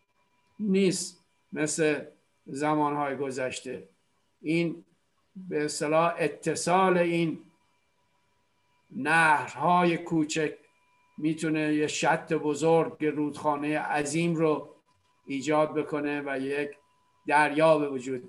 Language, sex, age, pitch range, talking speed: Persian, male, 50-69, 150-250 Hz, 80 wpm